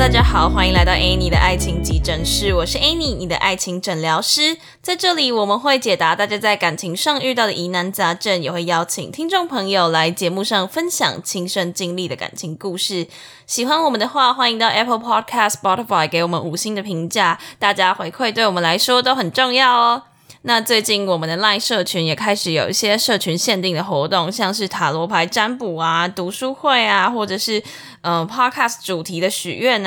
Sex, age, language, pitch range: female, 10-29, Chinese, 175-235 Hz